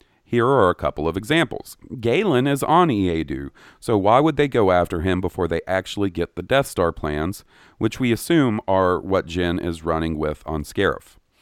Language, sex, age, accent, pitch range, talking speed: English, male, 40-59, American, 85-110 Hz, 190 wpm